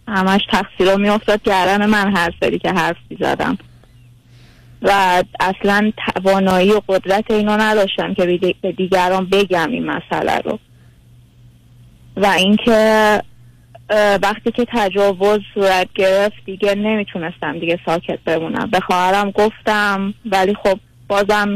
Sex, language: female, Persian